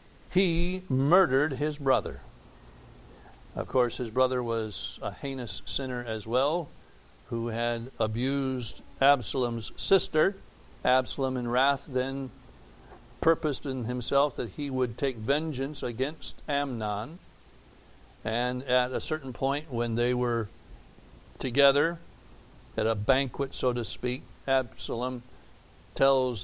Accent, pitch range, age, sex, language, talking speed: American, 115-135 Hz, 60-79, male, English, 115 wpm